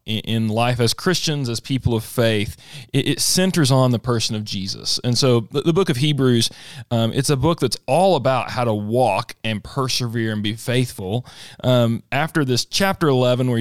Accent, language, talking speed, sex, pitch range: American, English, 185 wpm, male, 115-145 Hz